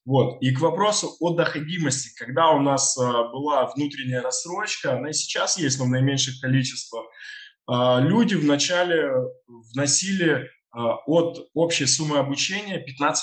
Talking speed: 120 wpm